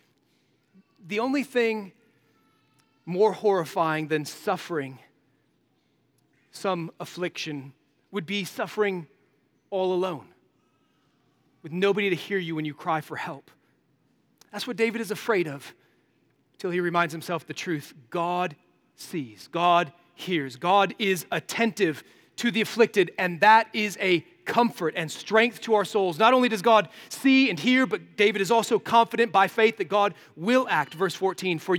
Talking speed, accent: 145 wpm, American